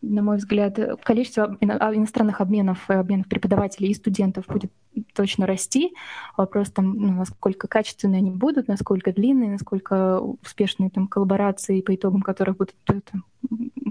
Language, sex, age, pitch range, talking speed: Russian, female, 20-39, 195-220 Hz, 125 wpm